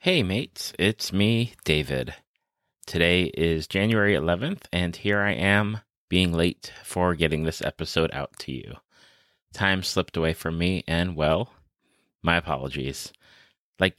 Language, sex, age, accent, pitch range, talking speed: English, male, 30-49, American, 80-100 Hz, 135 wpm